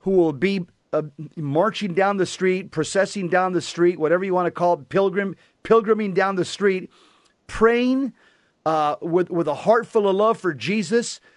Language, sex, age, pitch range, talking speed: English, male, 40-59, 165-210 Hz, 180 wpm